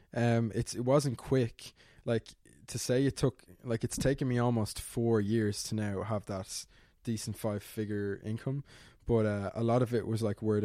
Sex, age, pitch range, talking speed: male, 20-39, 105-120 Hz, 190 wpm